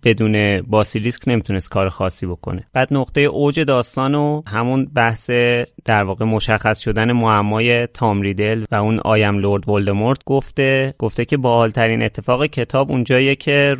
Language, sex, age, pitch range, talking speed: Persian, male, 30-49, 110-140 Hz, 150 wpm